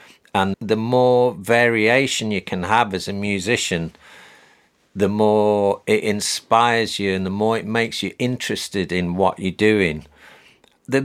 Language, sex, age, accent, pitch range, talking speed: French, male, 50-69, British, 95-115 Hz, 145 wpm